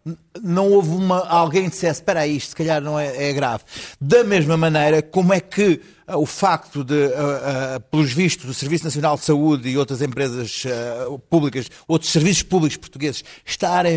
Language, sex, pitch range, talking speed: Portuguese, male, 140-175 Hz, 185 wpm